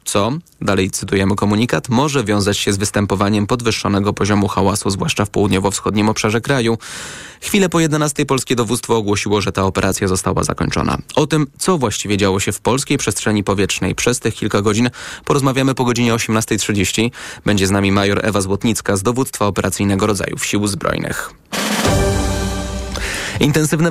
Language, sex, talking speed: Polish, male, 150 wpm